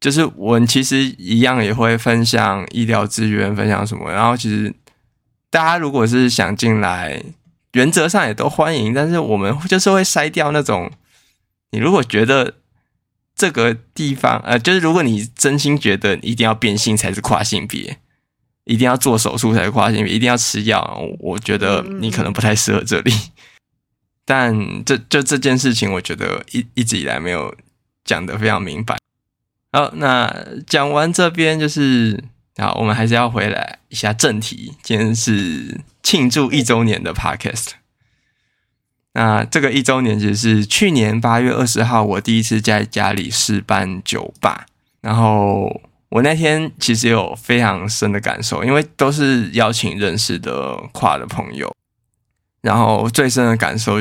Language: Chinese